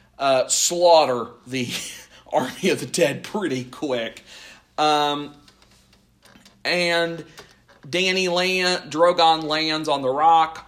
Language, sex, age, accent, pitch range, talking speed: English, male, 40-59, American, 125-170 Hz, 100 wpm